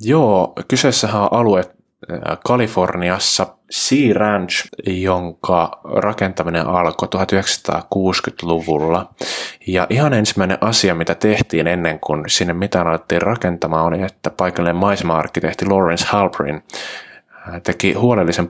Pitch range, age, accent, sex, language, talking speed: 85-100 Hz, 20-39, native, male, Finnish, 105 wpm